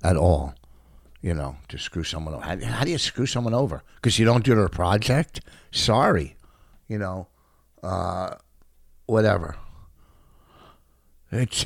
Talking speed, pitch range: 140 wpm, 75-100 Hz